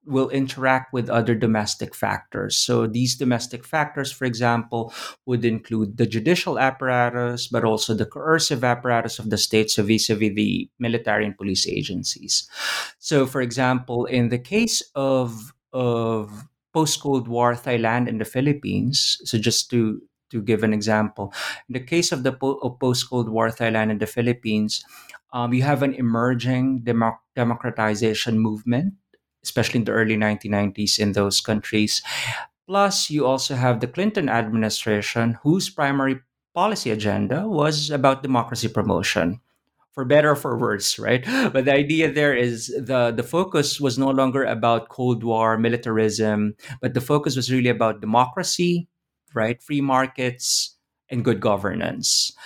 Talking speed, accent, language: 150 wpm, Filipino, English